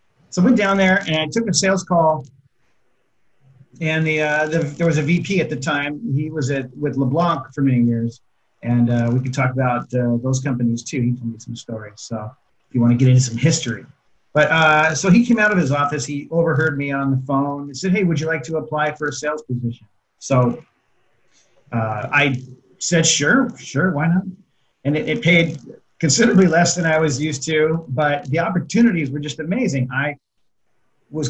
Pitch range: 125-160 Hz